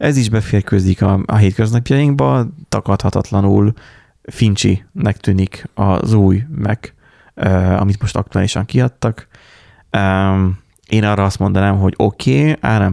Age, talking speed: 30-49, 125 wpm